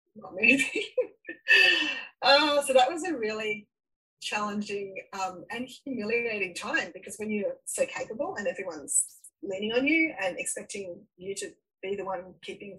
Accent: Australian